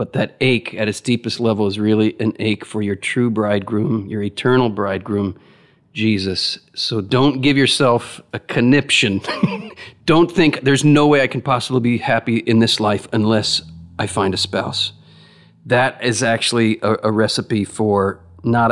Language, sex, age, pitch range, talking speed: English, male, 40-59, 105-130 Hz, 165 wpm